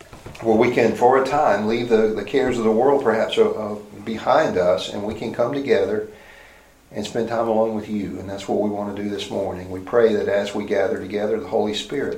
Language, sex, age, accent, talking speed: English, male, 50-69, American, 240 wpm